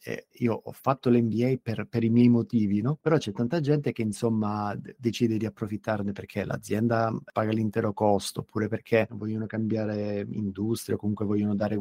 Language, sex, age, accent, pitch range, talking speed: Italian, male, 30-49, native, 105-120 Hz, 170 wpm